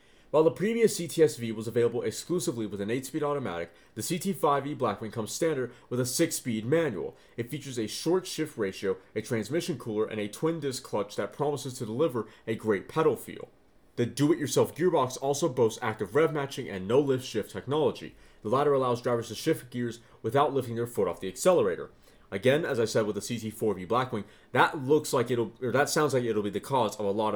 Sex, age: male, 30-49